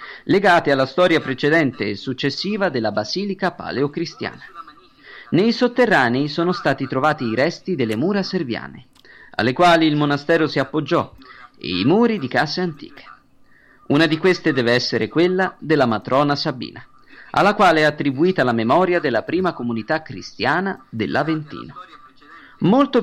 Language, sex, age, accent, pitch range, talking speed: Italian, male, 40-59, native, 130-185 Hz, 135 wpm